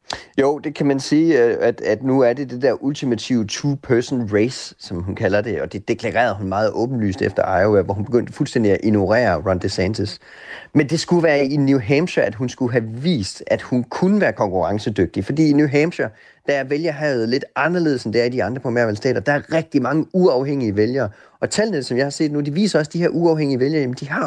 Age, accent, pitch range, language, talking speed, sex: 30-49, native, 120-150 Hz, Danish, 225 wpm, male